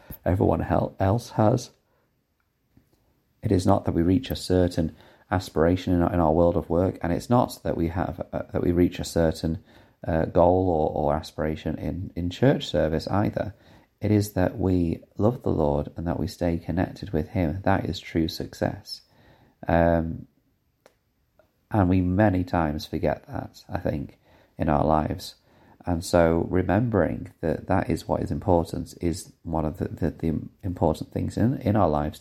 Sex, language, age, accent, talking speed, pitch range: male, English, 30-49, British, 170 wpm, 80-100 Hz